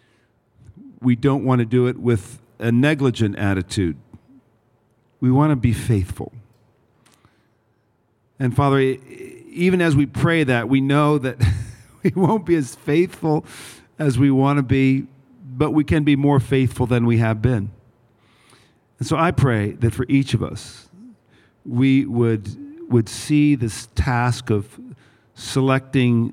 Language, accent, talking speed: English, American, 140 wpm